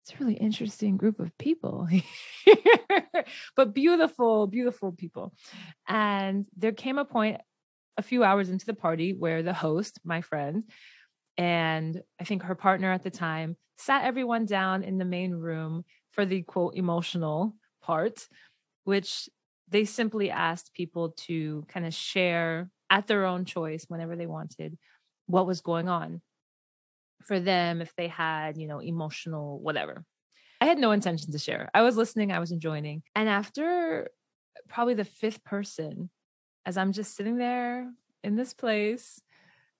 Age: 20-39